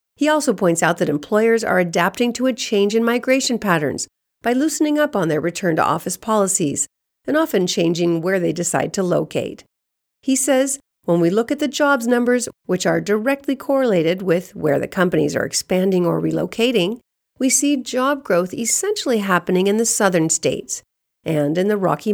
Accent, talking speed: American, 175 wpm